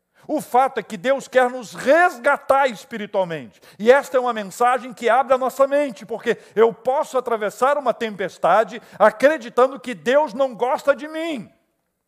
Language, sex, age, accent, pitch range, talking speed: Portuguese, male, 60-79, Brazilian, 210-290 Hz, 160 wpm